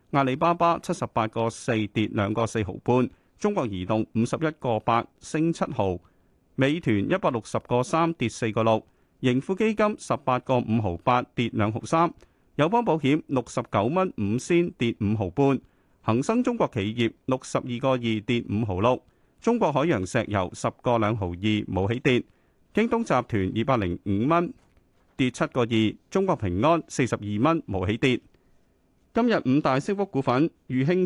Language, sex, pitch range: Chinese, male, 110-160 Hz